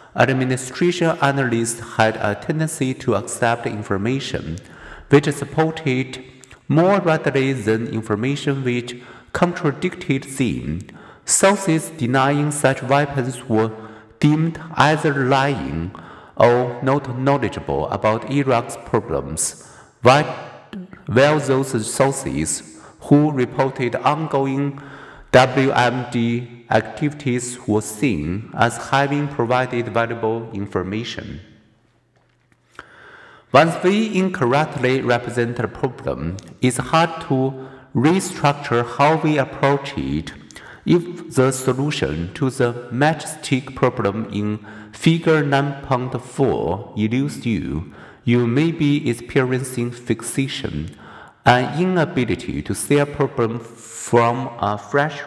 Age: 50-69